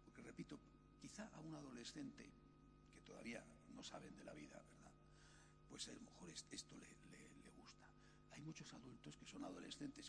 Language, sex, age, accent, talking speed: Spanish, male, 60-79, Spanish, 165 wpm